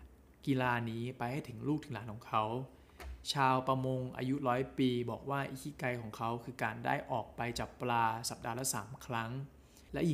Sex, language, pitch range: male, Thai, 115-135 Hz